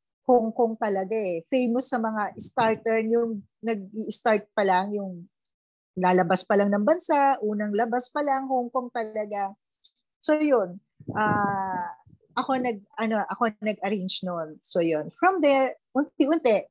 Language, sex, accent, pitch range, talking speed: Filipino, female, native, 200-260 Hz, 145 wpm